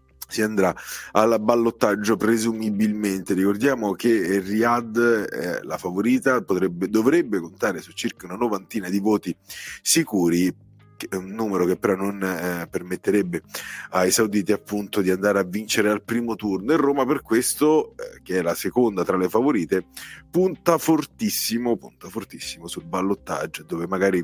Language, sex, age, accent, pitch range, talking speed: Italian, male, 30-49, native, 95-120 Hz, 135 wpm